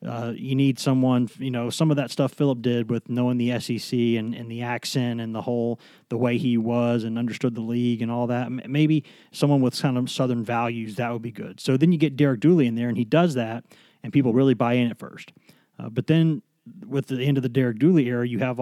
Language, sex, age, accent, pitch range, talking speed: English, male, 30-49, American, 120-155 Hz, 250 wpm